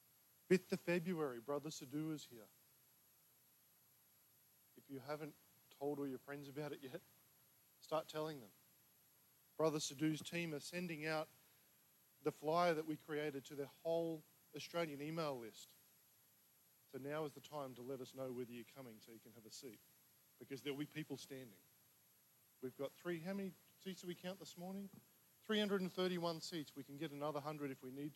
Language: English